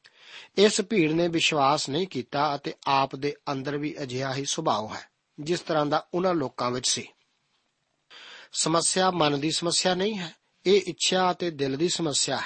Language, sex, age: Punjabi, male, 50-69